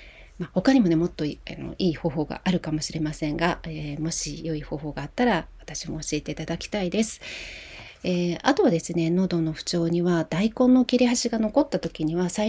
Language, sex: Japanese, female